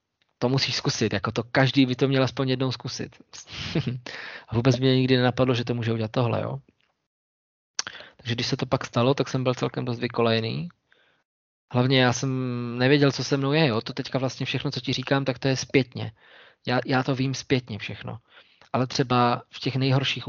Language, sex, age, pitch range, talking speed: Slovak, male, 20-39, 120-135 Hz, 195 wpm